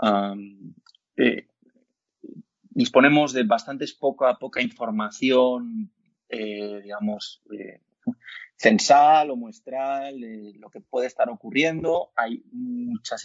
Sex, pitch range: male, 105-145 Hz